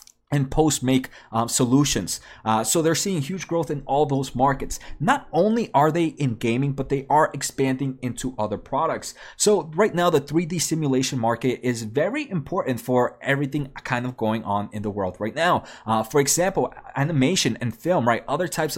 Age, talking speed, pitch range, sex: 20-39, 185 wpm, 125-150 Hz, male